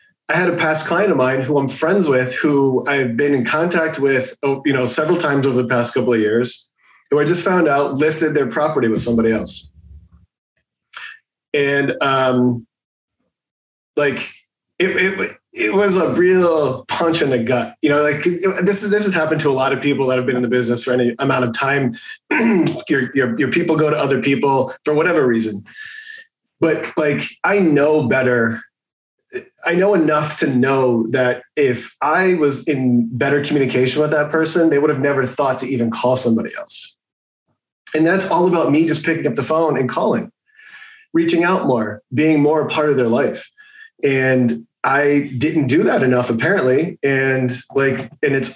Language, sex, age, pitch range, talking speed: English, male, 20-39, 125-160 Hz, 185 wpm